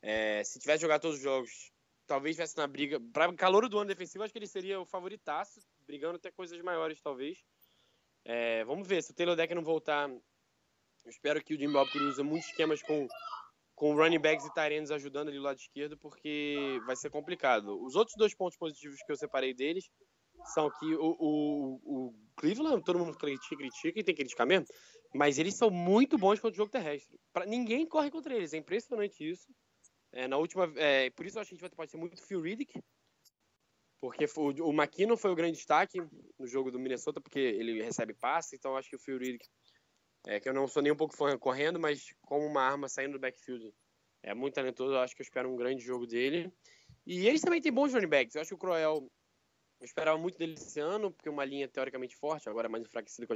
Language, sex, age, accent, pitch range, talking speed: Portuguese, male, 10-29, Brazilian, 135-180 Hz, 225 wpm